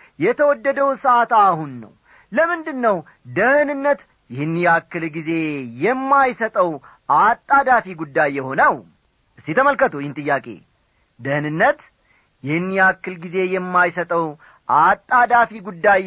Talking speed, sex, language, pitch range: 80 wpm, male, Amharic, 155-250 Hz